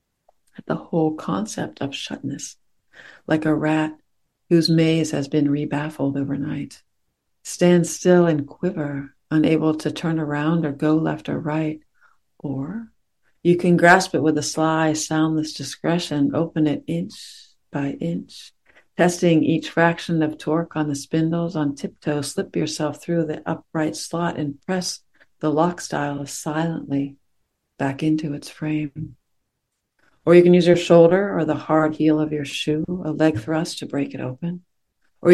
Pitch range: 145-165 Hz